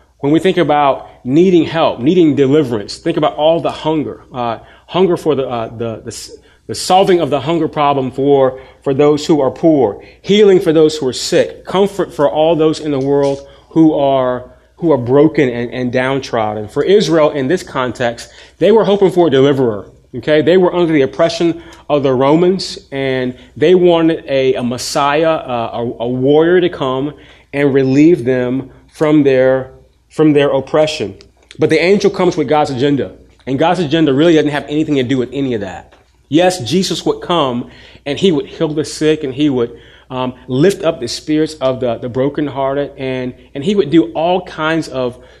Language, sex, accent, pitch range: English, male, American, 130-165 Hz